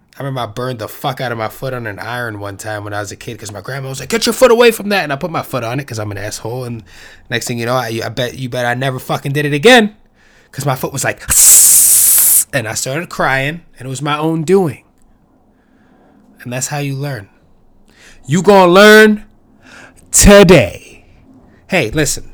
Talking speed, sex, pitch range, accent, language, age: 230 wpm, male, 130-175 Hz, American, English, 20-39